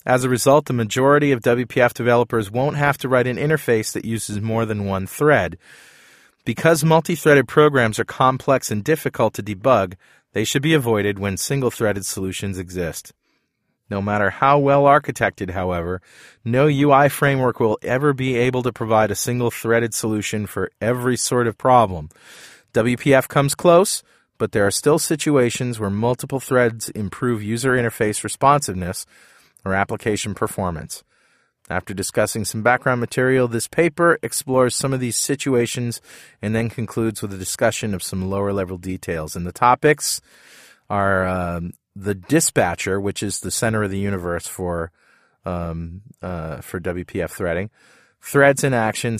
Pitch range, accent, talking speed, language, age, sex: 100-130 Hz, American, 150 wpm, English, 30-49, male